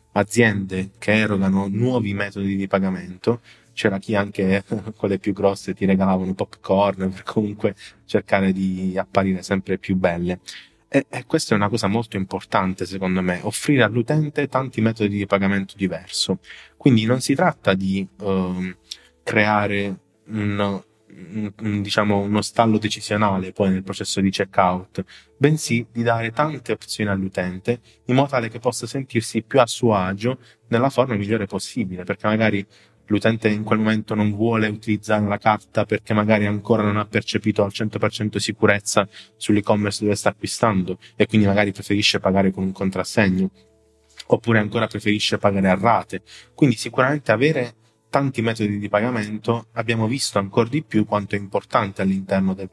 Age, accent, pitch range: 20-39, native, 95-115 Hz